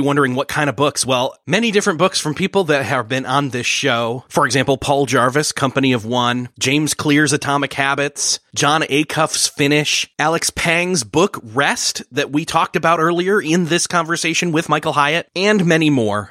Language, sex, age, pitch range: English, male, 30-49, 115-160 Hz